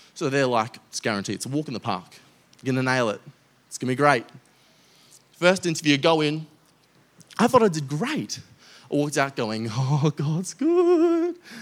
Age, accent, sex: 20-39, Australian, male